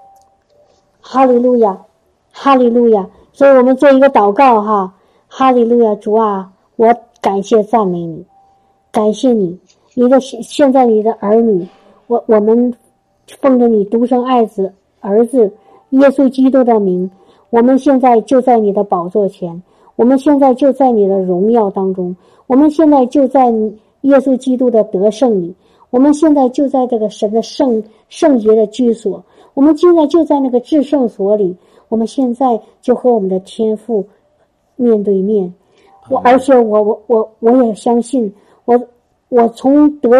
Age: 50-69